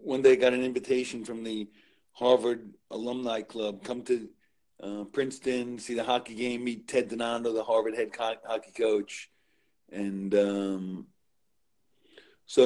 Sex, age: male, 40-59